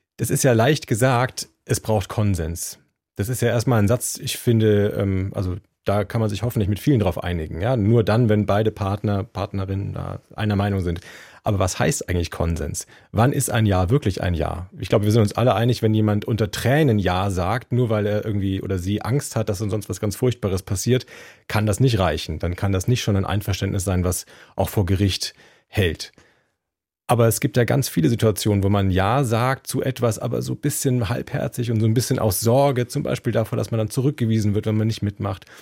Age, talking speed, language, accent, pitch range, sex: 40-59, 215 wpm, German, German, 100-125 Hz, male